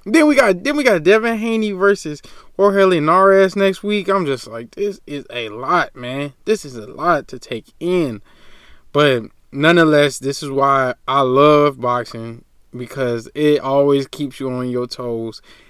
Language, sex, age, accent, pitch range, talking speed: English, male, 20-39, American, 125-170 Hz, 170 wpm